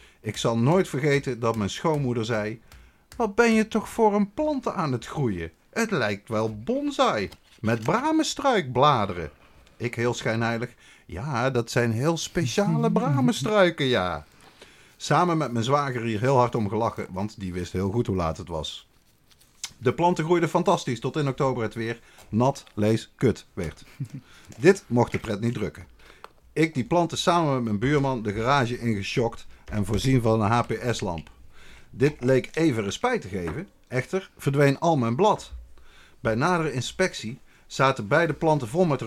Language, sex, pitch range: Dutch, male, 105-150 Hz